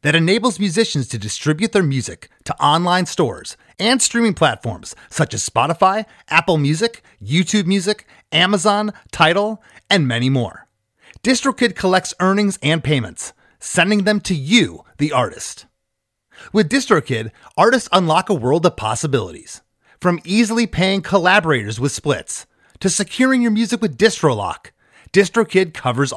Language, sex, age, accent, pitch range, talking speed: English, male, 30-49, American, 140-210 Hz, 135 wpm